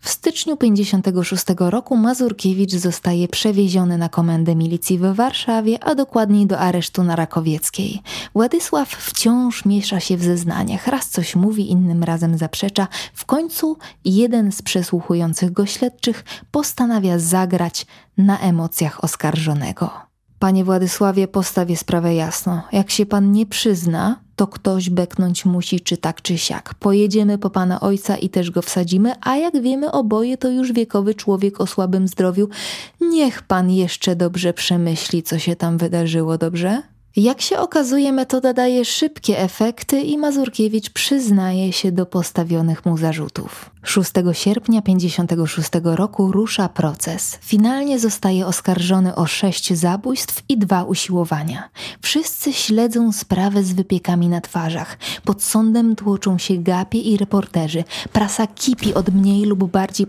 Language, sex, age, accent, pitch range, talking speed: Polish, female, 20-39, native, 180-215 Hz, 140 wpm